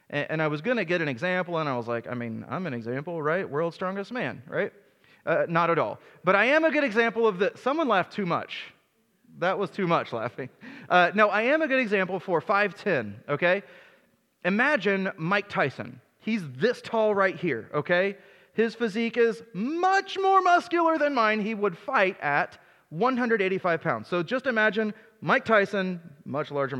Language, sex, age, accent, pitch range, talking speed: English, male, 30-49, American, 170-235 Hz, 185 wpm